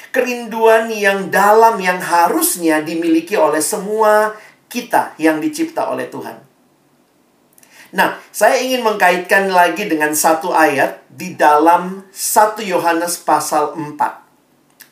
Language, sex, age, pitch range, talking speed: Indonesian, male, 50-69, 160-220 Hz, 110 wpm